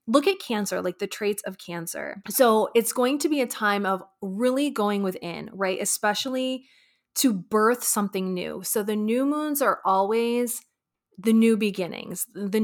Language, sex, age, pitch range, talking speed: English, female, 20-39, 185-225 Hz, 165 wpm